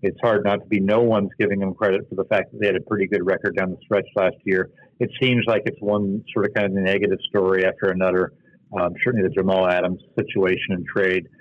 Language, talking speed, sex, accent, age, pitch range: English, 240 wpm, male, American, 60-79, 105-135 Hz